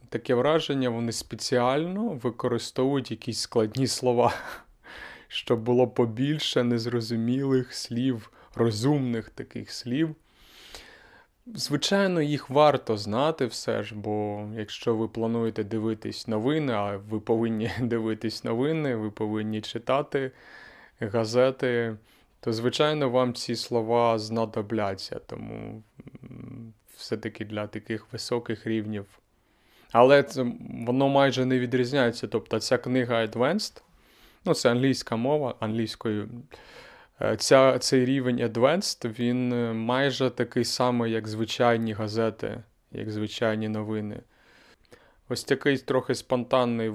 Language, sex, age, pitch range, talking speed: Ukrainian, male, 20-39, 110-130 Hz, 105 wpm